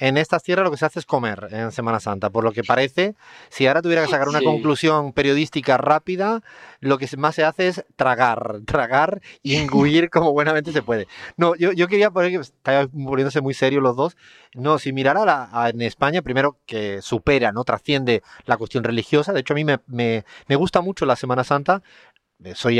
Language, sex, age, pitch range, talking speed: Spanish, male, 30-49, 125-155 Hz, 200 wpm